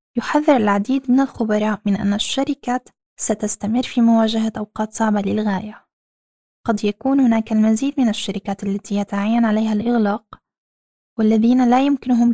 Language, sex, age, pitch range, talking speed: Arabic, female, 10-29, 205-245 Hz, 125 wpm